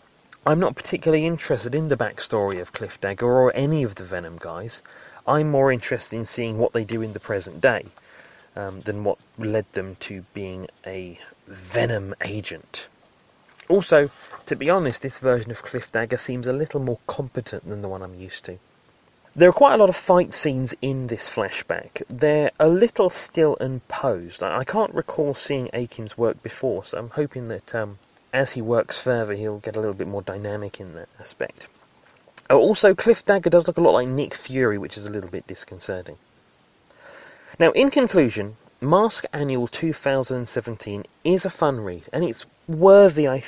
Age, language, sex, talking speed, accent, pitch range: 30-49, English, male, 180 wpm, British, 110-155 Hz